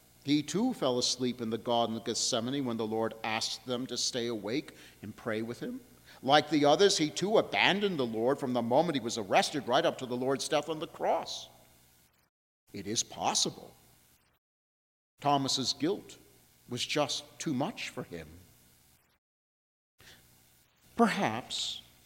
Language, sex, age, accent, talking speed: English, male, 50-69, American, 150 wpm